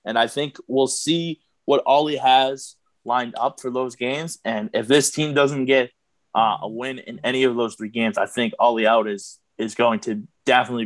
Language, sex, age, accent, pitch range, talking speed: English, male, 20-39, American, 115-145 Hz, 205 wpm